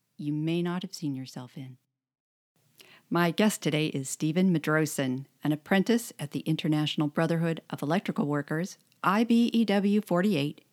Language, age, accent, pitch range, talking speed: English, 50-69, American, 145-180 Hz, 135 wpm